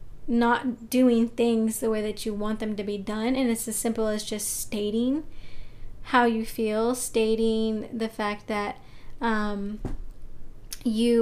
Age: 20-39